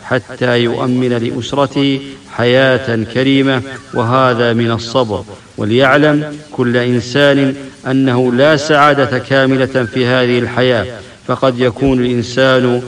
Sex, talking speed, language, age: male, 100 wpm, English, 50-69